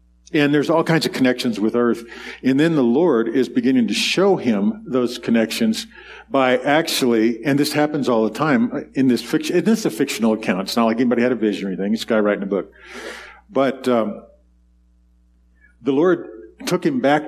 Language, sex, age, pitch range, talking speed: English, male, 50-69, 110-140 Hz, 200 wpm